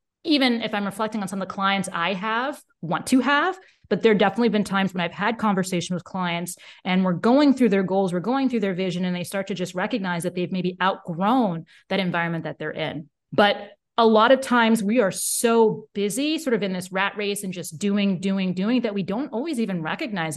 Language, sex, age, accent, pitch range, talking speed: English, female, 30-49, American, 180-220 Hz, 225 wpm